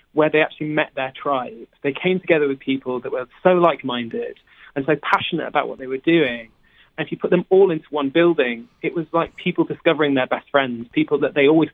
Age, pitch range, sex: 20-39, 130-160 Hz, male